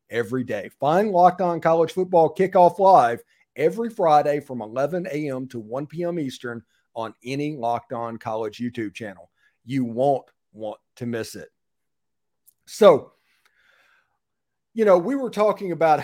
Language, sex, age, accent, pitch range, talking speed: English, male, 40-59, American, 125-165 Hz, 140 wpm